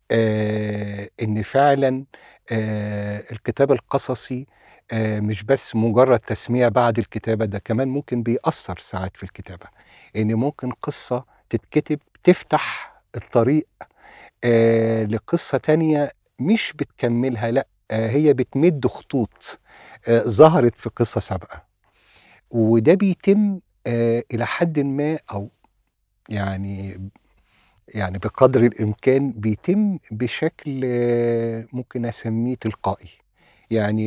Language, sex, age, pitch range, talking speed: Arabic, male, 50-69, 105-135 Hz, 90 wpm